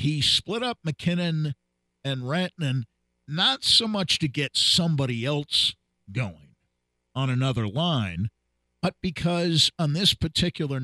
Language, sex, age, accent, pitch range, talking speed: English, male, 50-69, American, 105-155 Hz, 120 wpm